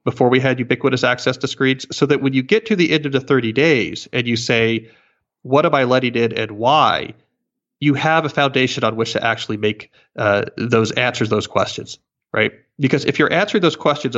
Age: 30-49